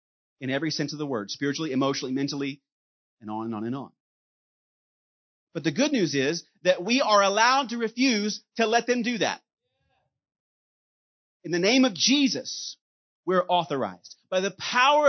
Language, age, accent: English, 30-49, American